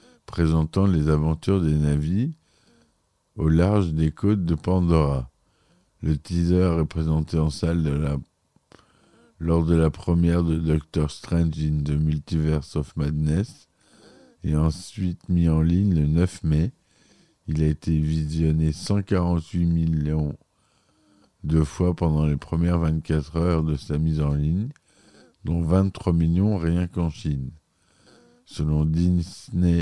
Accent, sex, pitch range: French, male, 75-90 Hz